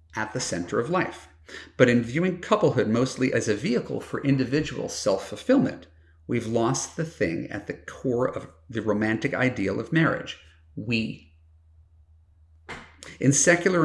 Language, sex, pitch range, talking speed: English, male, 85-135 Hz, 140 wpm